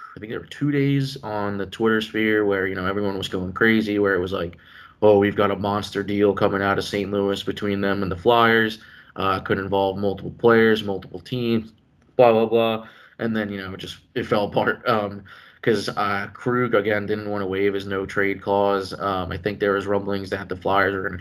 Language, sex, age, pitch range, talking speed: English, male, 20-39, 95-105 Hz, 230 wpm